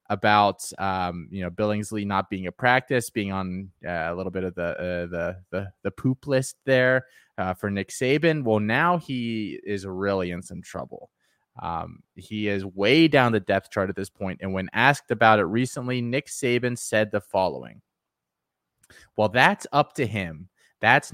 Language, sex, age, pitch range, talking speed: English, male, 20-39, 100-125 Hz, 180 wpm